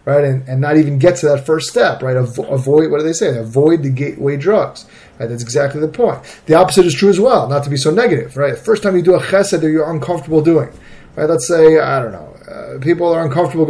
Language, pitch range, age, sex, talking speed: English, 130-165 Hz, 30-49, male, 255 wpm